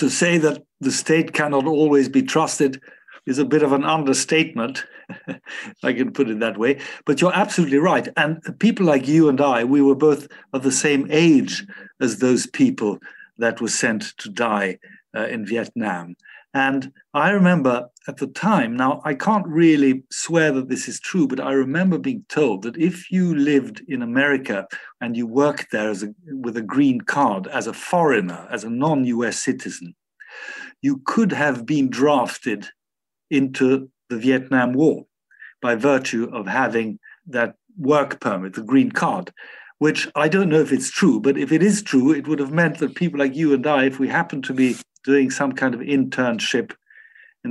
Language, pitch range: English, 125-165 Hz